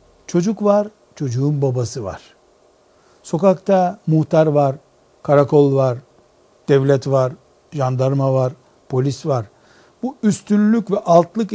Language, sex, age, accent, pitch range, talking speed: Turkish, male, 60-79, native, 135-190 Hz, 105 wpm